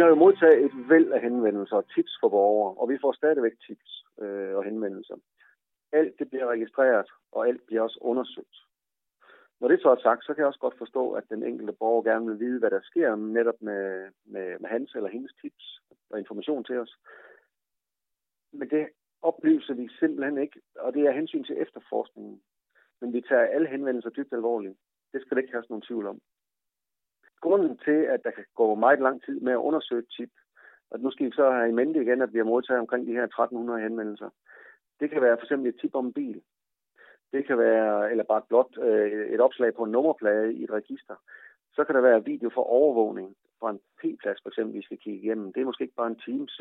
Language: Danish